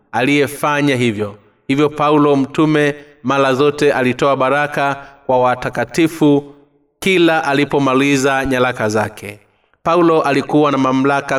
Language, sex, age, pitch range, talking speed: Swahili, male, 30-49, 125-145 Hz, 100 wpm